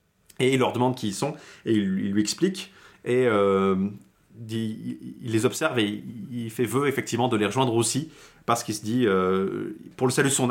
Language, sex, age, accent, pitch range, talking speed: French, male, 30-49, French, 105-130 Hz, 215 wpm